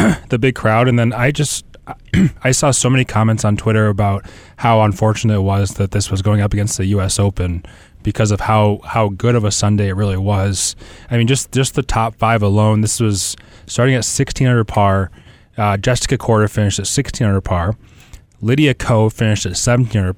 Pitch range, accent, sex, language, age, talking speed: 95-115 Hz, American, male, English, 20-39, 195 wpm